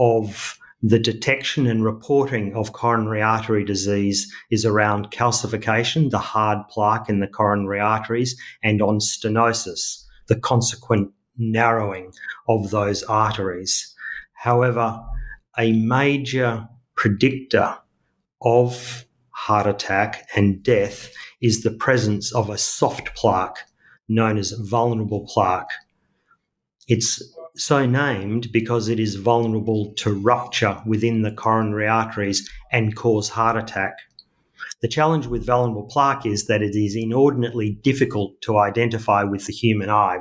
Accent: Australian